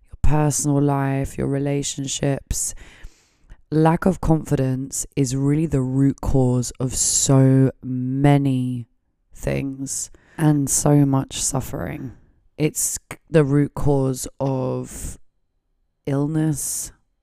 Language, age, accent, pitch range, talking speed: English, 20-39, British, 130-140 Hz, 90 wpm